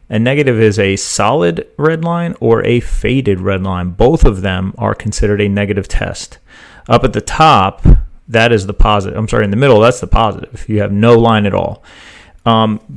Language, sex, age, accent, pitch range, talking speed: English, male, 30-49, American, 100-115 Hz, 200 wpm